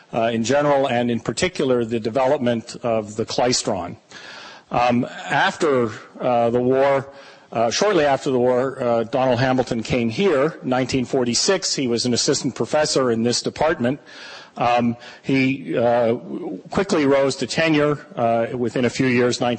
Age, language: 40-59, English